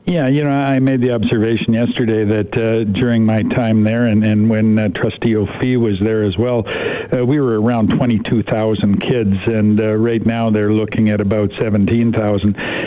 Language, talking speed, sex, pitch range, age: English, 180 wpm, male, 105-115 Hz, 60-79